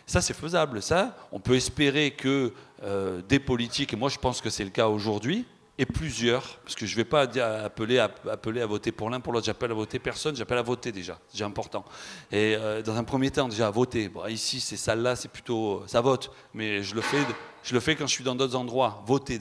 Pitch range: 110-150 Hz